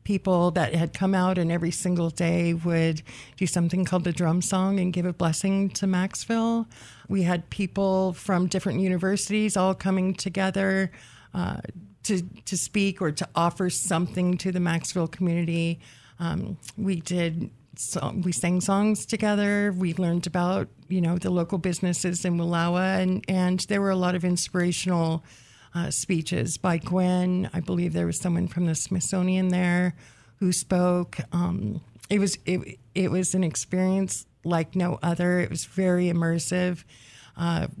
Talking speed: 160 wpm